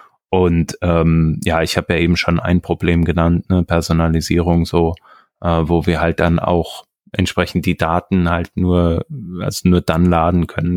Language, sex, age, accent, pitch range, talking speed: German, male, 20-39, German, 85-95 Hz, 165 wpm